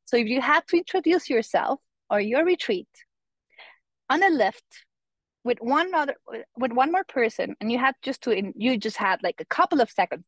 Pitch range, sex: 210-275 Hz, female